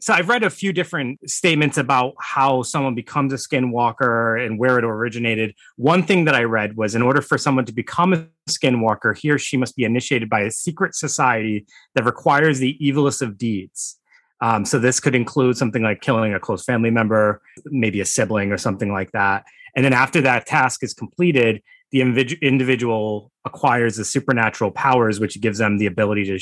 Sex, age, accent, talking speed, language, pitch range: male, 30-49, American, 195 wpm, English, 110-135 Hz